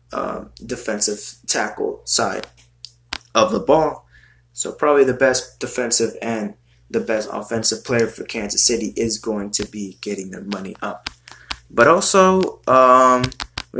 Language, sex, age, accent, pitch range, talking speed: English, male, 20-39, American, 105-125 Hz, 135 wpm